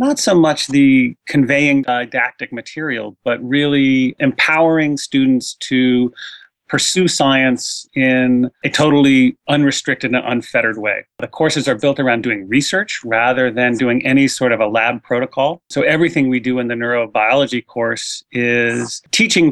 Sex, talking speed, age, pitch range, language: male, 145 wpm, 30-49, 125-145 Hz, English